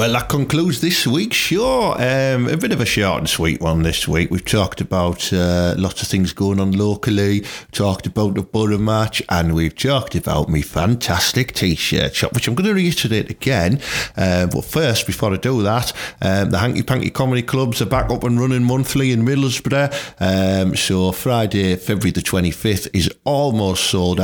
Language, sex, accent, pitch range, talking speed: English, male, British, 90-115 Hz, 190 wpm